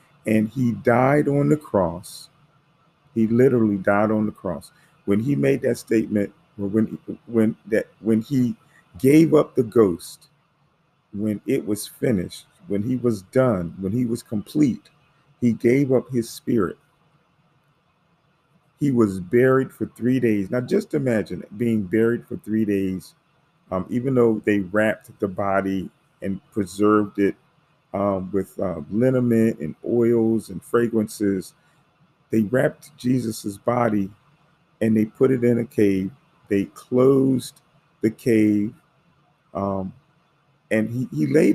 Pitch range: 105-145 Hz